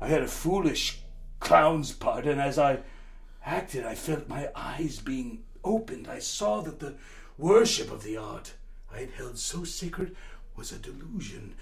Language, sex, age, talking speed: English, male, 60-79, 165 wpm